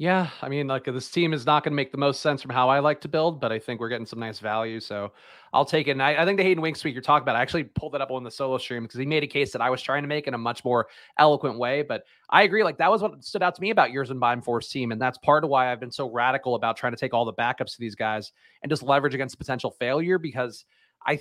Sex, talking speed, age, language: male, 320 wpm, 30-49, English